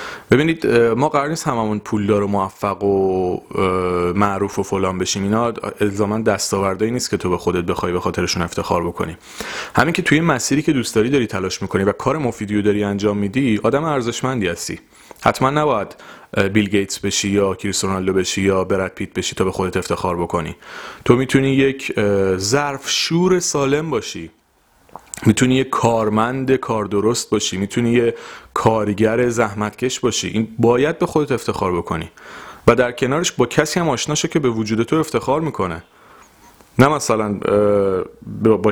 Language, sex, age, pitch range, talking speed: Persian, male, 30-49, 95-125 Hz, 165 wpm